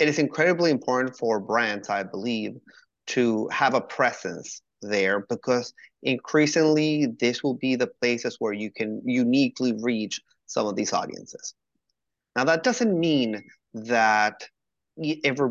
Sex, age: male, 30-49